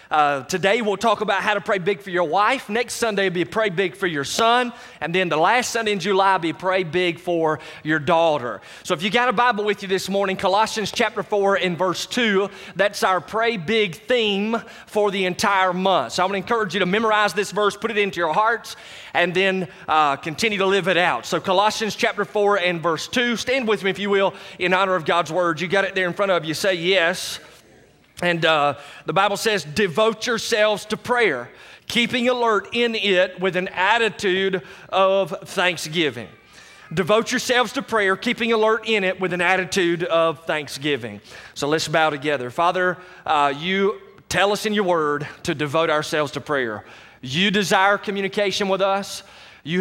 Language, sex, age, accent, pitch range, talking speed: English, male, 30-49, American, 175-210 Hz, 200 wpm